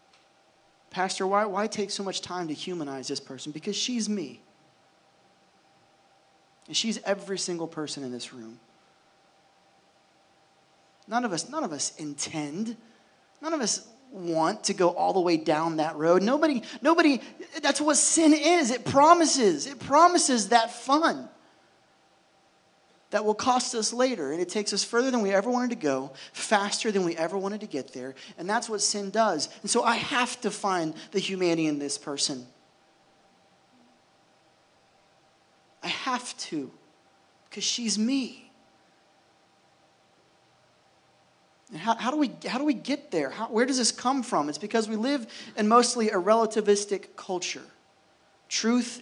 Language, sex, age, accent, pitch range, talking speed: English, male, 30-49, American, 160-240 Hz, 155 wpm